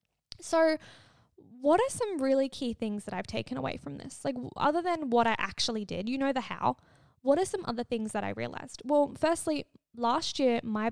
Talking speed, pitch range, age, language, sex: 205 wpm, 230-290 Hz, 10-29, English, female